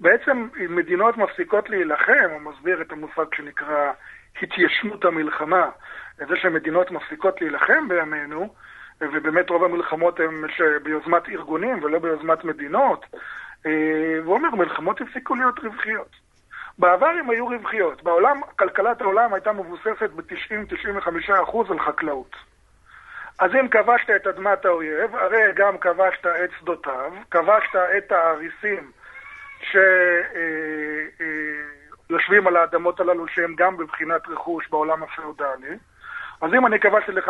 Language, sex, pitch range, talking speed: Hebrew, male, 165-225 Hz, 120 wpm